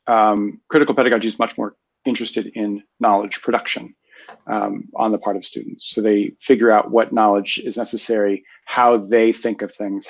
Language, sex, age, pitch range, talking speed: English, male, 40-59, 105-125 Hz, 170 wpm